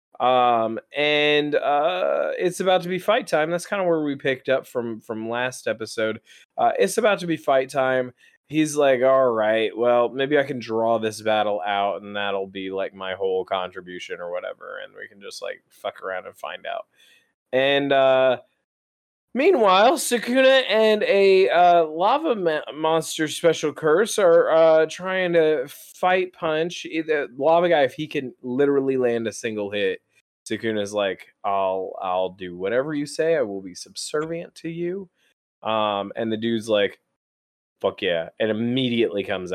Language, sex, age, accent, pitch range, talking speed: English, male, 20-39, American, 110-160 Hz, 165 wpm